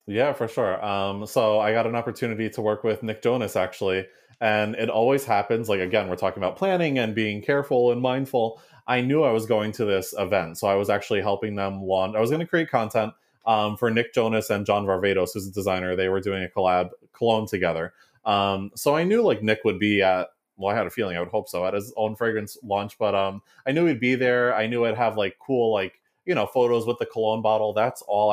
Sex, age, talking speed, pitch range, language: male, 20-39, 240 wpm, 100-125 Hz, English